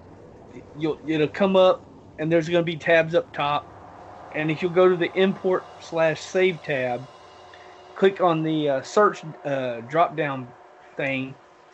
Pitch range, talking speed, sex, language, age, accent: 140-185 Hz, 155 wpm, male, English, 30-49, American